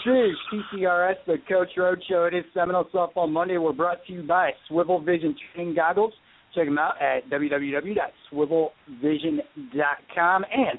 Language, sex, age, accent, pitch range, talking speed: English, male, 50-69, American, 155-195 Hz, 145 wpm